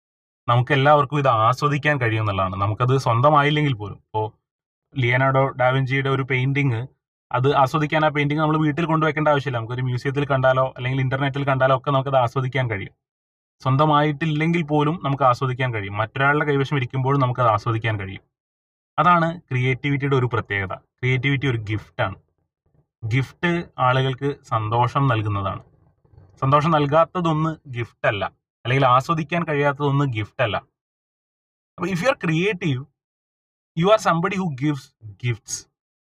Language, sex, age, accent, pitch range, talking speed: Malayalam, male, 30-49, native, 110-150 Hz, 125 wpm